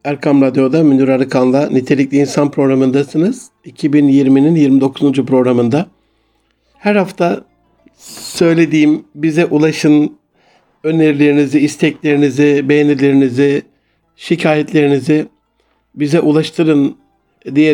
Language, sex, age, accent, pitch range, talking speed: Turkish, male, 60-79, native, 135-155 Hz, 75 wpm